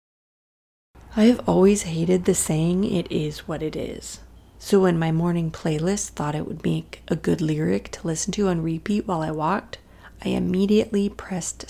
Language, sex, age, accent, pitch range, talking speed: English, female, 30-49, American, 155-195 Hz, 175 wpm